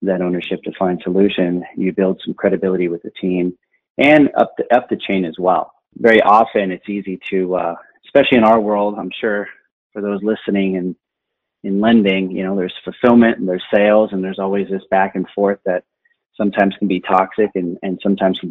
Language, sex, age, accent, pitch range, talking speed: English, male, 30-49, American, 90-105 Hz, 200 wpm